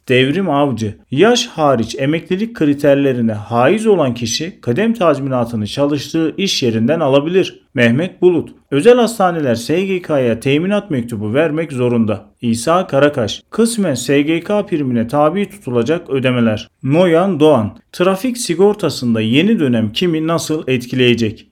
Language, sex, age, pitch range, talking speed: Turkish, male, 40-59, 120-180 Hz, 115 wpm